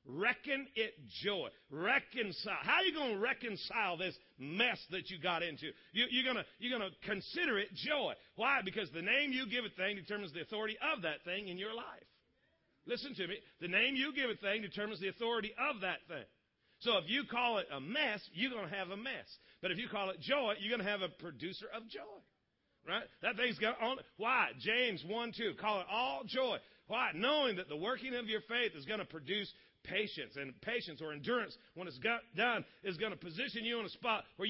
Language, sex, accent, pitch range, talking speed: English, male, American, 200-255 Hz, 210 wpm